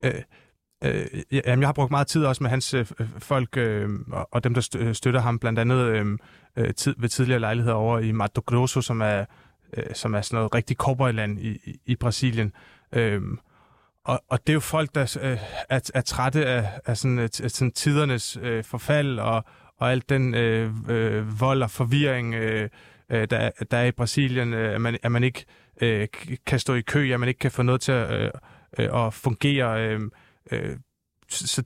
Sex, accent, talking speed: male, native, 135 wpm